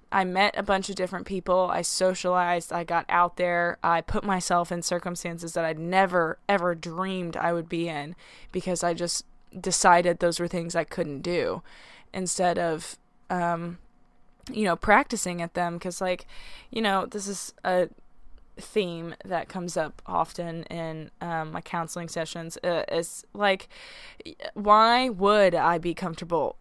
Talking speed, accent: 160 wpm, American